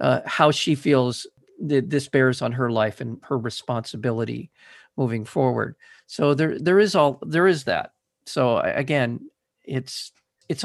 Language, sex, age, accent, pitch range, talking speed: English, male, 50-69, American, 125-160 Hz, 150 wpm